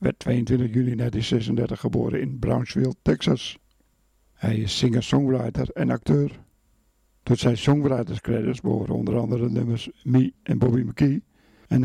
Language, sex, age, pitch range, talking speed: Dutch, male, 60-79, 115-135 Hz, 135 wpm